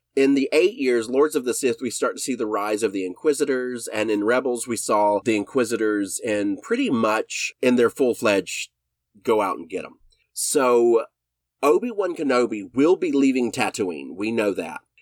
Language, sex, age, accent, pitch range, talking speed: English, male, 30-49, American, 110-150 Hz, 180 wpm